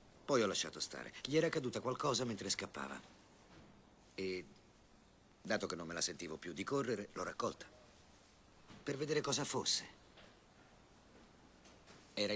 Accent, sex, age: native, male, 50-69